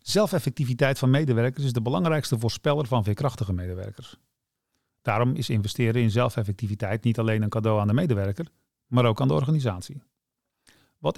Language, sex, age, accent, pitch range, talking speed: Dutch, male, 40-59, Dutch, 115-150 Hz, 150 wpm